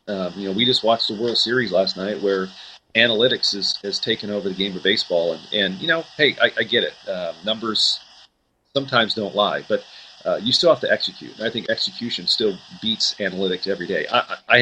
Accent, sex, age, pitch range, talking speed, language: American, male, 40-59, 100-130 Hz, 215 wpm, English